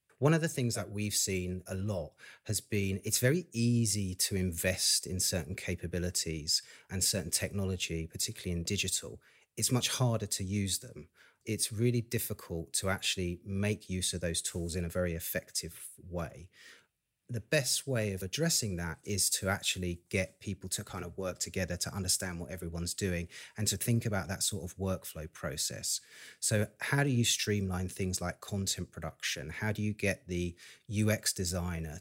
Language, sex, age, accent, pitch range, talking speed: English, male, 30-49, British, 90-110 Hz, 170 wpm